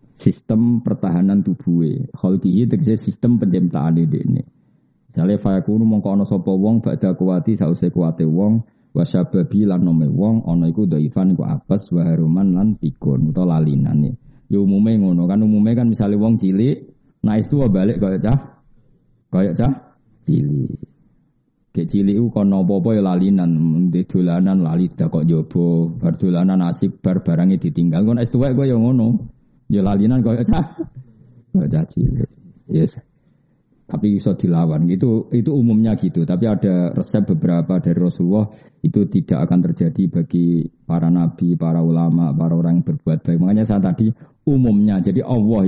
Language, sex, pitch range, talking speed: Indonesian, male, 90-125 Hz, 150 wpm